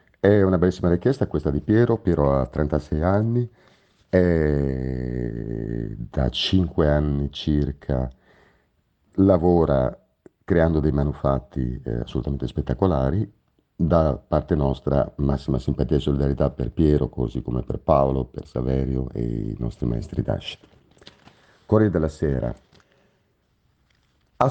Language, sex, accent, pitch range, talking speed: Italian, male, native, 65-90 Hz, 115 wpm